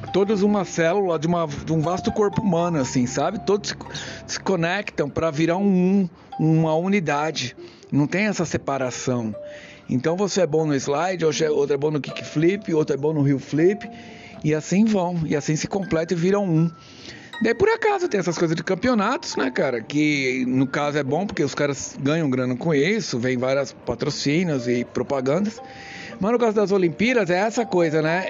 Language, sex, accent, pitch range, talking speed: Portuguese, male, Brazilian, 150-210 Hz, 190 wpm